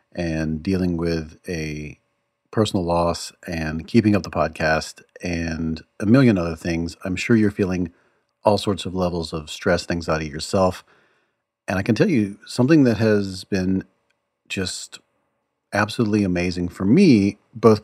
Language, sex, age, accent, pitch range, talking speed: English, male, 40-59, American, 85-110 Hz, 150 wpm